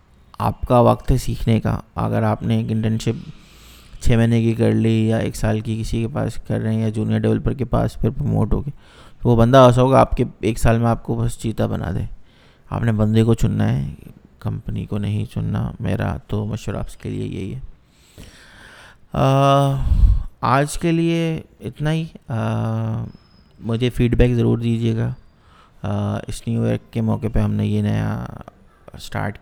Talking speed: 165 wpm